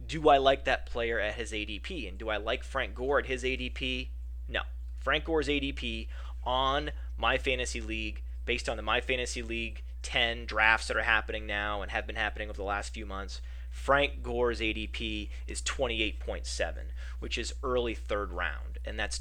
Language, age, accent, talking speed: English, 30-49, American, 180 wpm